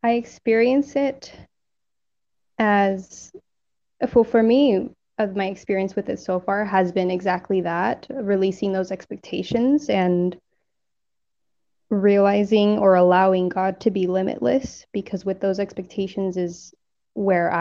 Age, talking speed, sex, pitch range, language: 20-39, 110 wpm, female, 190-215 Hz, English